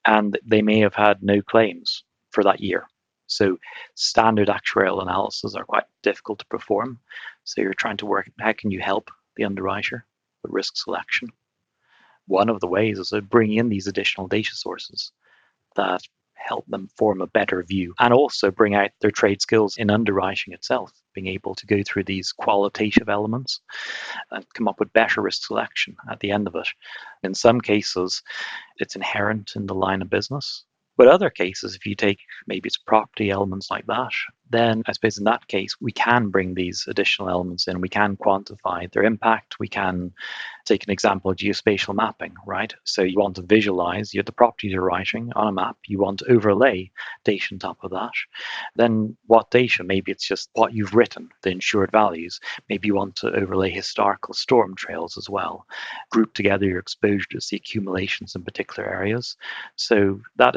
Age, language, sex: 30-49, English, male